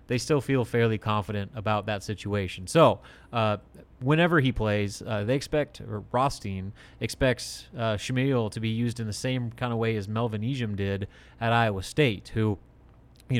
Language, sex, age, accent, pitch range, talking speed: English, male, 30-49, American, 105-125 Hz, 175 wpm